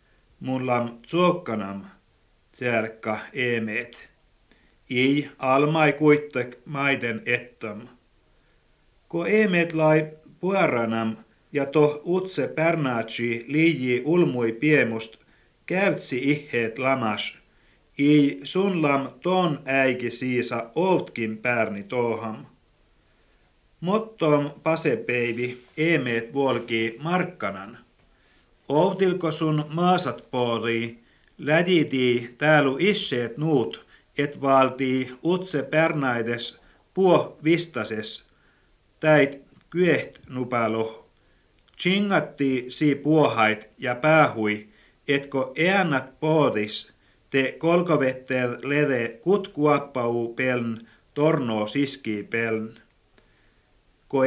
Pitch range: 115-155 Hz